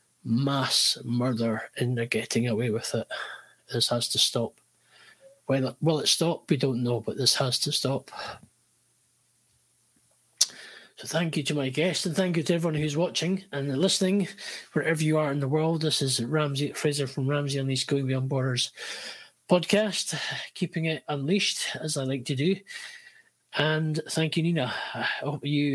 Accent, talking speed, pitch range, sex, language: British, 165 wpm, 130-160 Hz, male, English